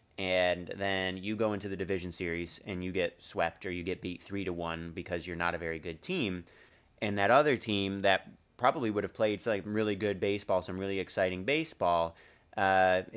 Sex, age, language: male, 30-49, English